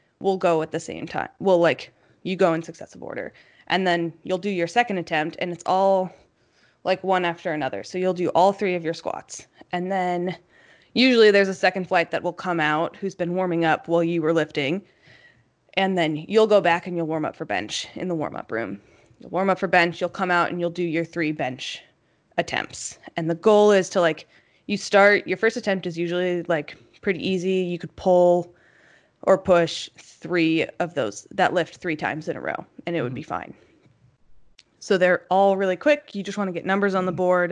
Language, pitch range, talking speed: English, 165-190 Hz, 215 wpm